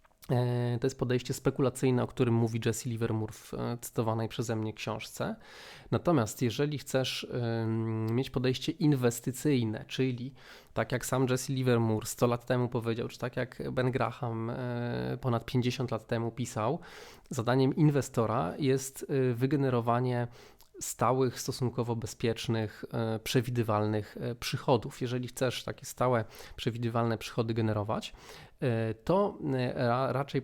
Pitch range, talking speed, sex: 115-130 Hz, 115 wpm, male